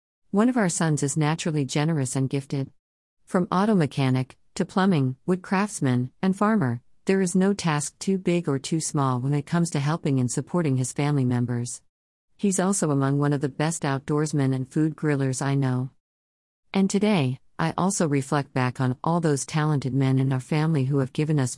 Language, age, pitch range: English, 50-69, 130-160 Hz